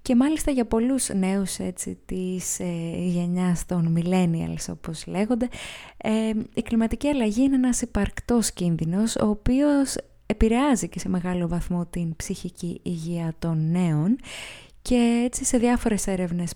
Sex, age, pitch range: female, 20-39, 175-230 Hz